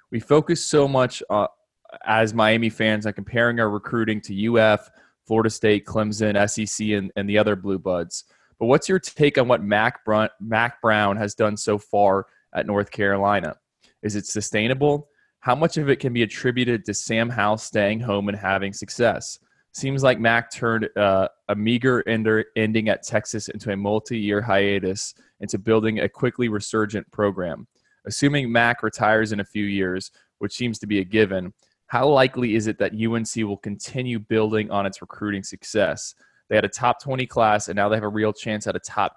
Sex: male